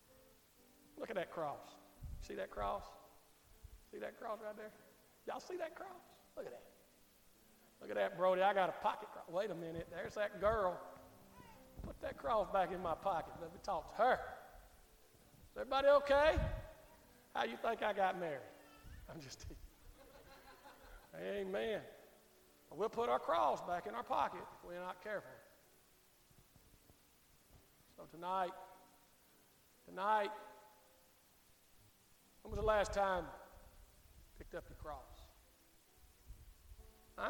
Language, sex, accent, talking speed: English, male, American, 140 wpm